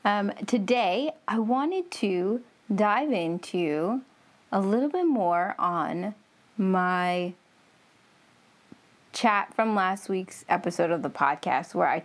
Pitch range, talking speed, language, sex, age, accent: 185-240 Hz, 115 wpm, English, female, 20-39, American